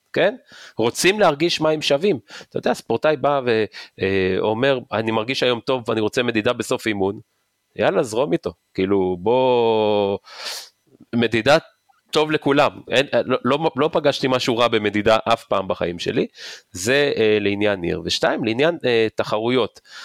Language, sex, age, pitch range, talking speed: Hebrew, male, 30-49, 110-135 Hz, 140 wpm